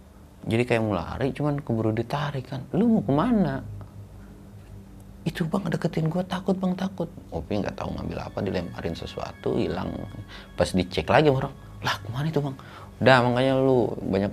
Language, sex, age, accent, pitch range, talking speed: Indonesian, male, 30-49, native, 80-115 Hz, 155 wpm